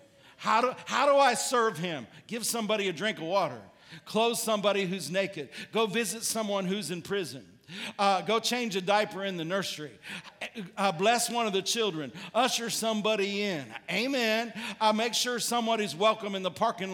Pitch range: 185-225 Hz